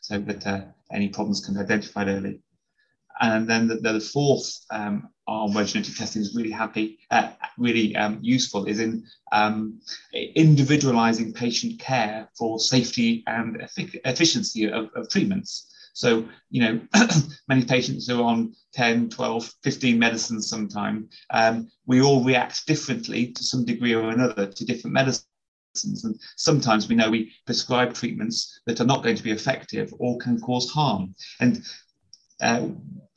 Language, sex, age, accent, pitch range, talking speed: English, male, 30-49, British, 110-130 Hz, 150 wpm